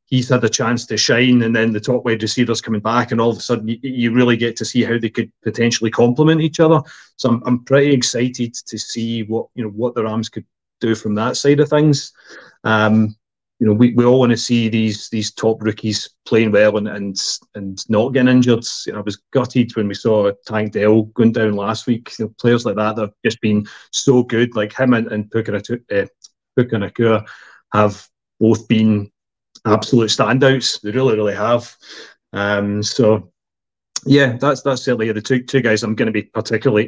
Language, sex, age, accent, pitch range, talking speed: English, male, 30-49, British, 110-125 Hz, 210 wpm